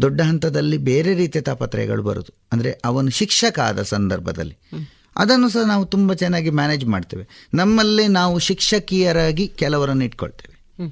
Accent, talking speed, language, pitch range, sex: native, 125 wpm, Kannada, 125-185 Hz, male